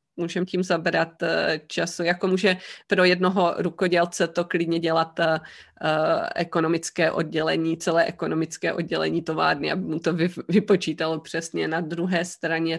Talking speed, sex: 130 wpm, female